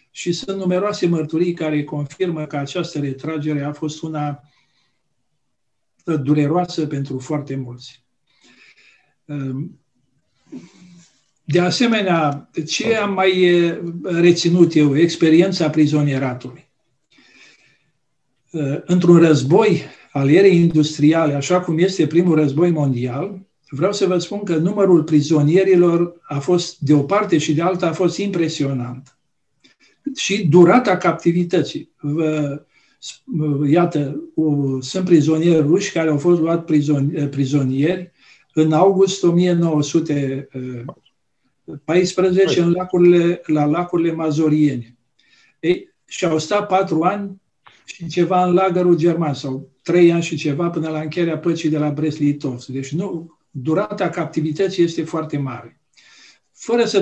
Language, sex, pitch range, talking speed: English, male, 145-175 Hz, 110 wpm